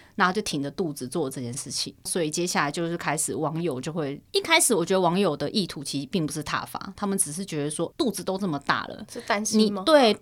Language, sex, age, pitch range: Chinese, female, 30-49, 150-195 Hz